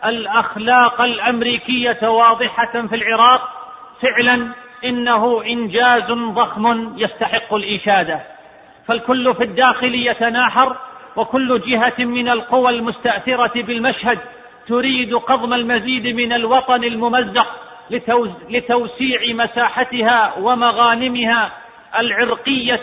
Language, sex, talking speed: Arabic, male, 80 wpm